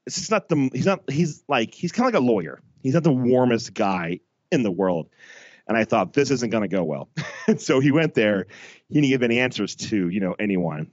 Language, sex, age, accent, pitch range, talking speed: English, male, 30-49, American, 105-135 Hz, 245 wpm